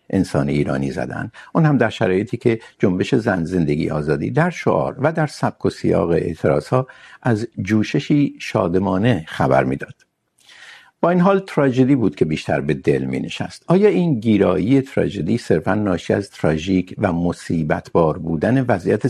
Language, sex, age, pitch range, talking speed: Urdu, male, 60-79, 90-140 Hz, 155 wpm